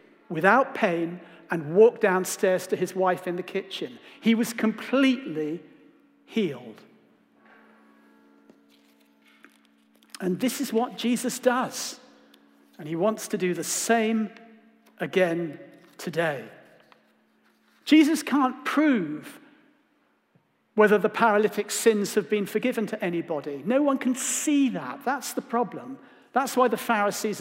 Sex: male